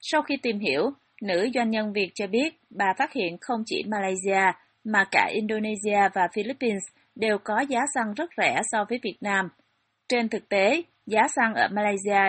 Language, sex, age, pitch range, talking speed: Vietnamese, female, 20-39, 185-235 Hz, 185 wpm